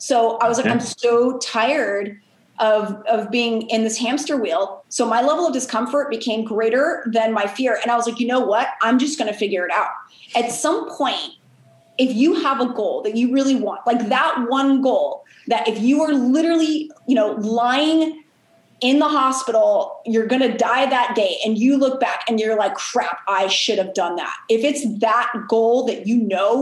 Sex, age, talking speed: female, 30-49, 205 wpm